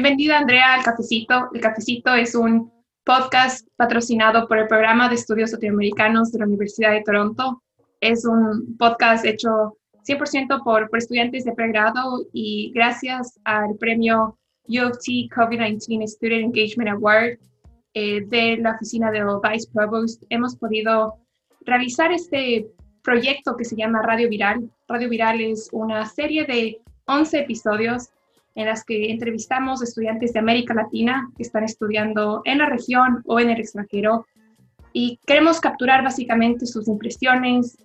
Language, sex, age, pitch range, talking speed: English, female, 20-39, 220-245 Hz, 140 wpm